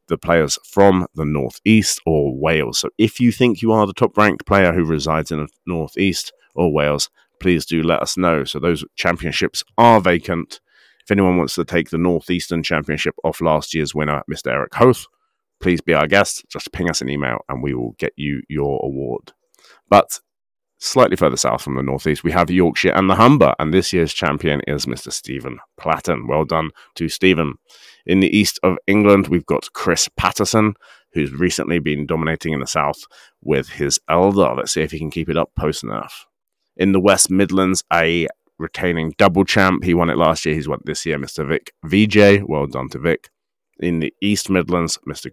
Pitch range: 75-95 Hz